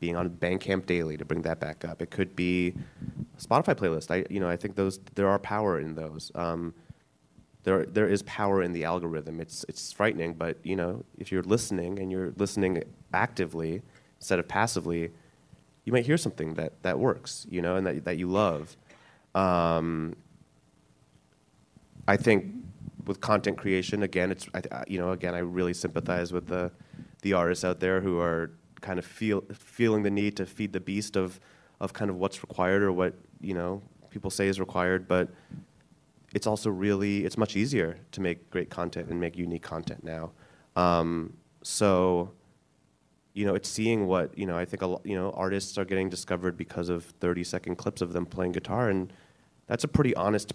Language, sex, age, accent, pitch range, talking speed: English, male, 30-49, American, 85-100 Hz, 190 wpm